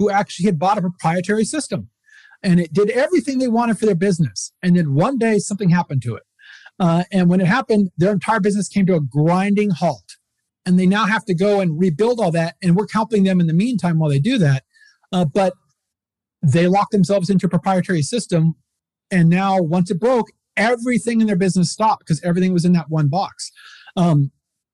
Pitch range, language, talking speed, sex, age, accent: 165-200 Hz, English, 205 wpm, male, 40-59, American